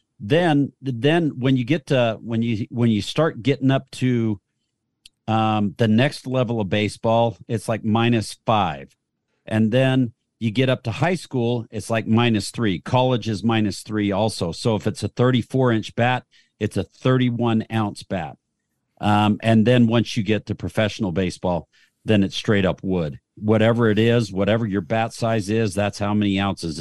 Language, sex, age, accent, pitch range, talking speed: English, male, 50-69, American, 105-125 Hz, 175 wpm